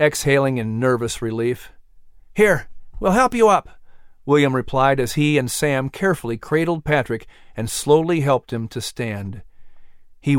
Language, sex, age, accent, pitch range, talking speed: English, male, 50-69, American, 115-165 Hz, 145 wpm